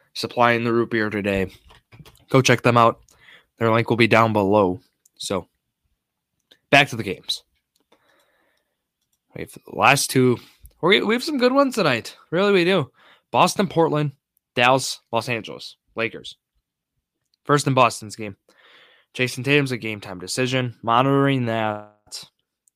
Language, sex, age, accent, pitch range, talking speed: English, male, 10-29, American, 105-130 Hz, 135 wpm